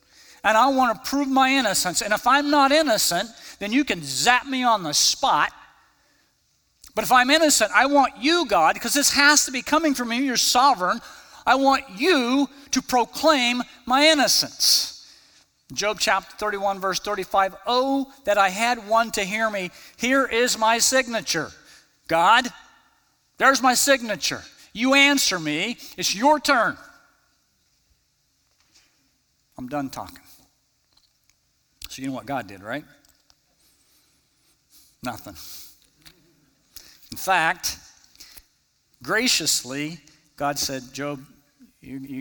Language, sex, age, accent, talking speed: English, male, 50-69, American, 130 wpm